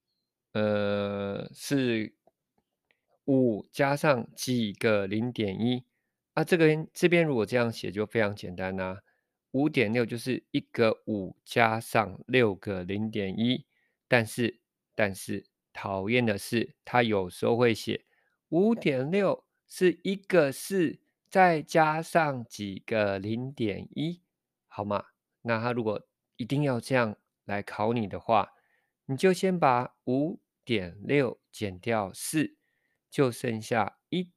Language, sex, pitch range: Chinese, male, 105-145 Hz